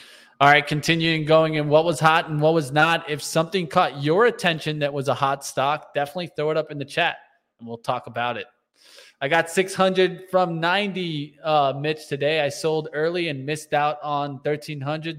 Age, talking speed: 20-39, 200 wpm